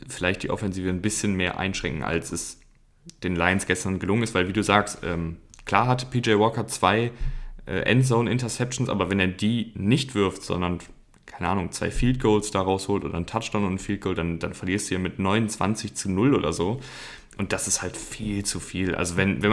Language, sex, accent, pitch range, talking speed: German, male, German, 95-125 Hz, 210 wpm